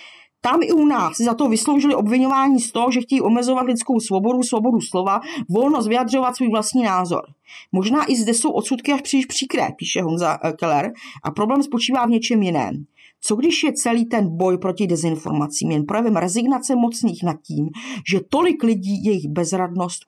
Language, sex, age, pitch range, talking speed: Czech, female, 40-59, 195-270 Hz, 175 wpm